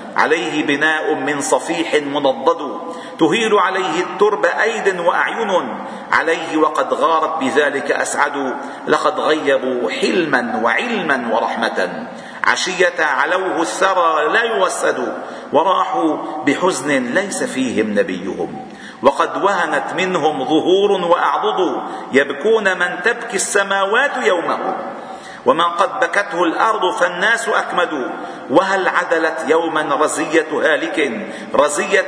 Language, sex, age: Arabic, male, 50-69